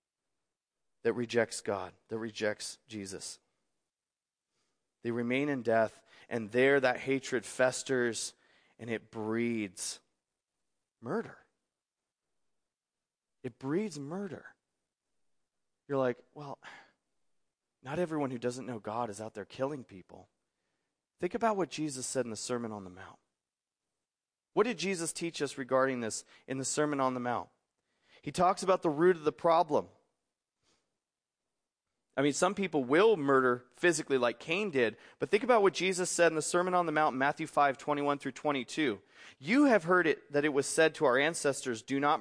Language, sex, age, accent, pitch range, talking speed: English, male, 30-49, American, 130-190 Hz, 155 wpm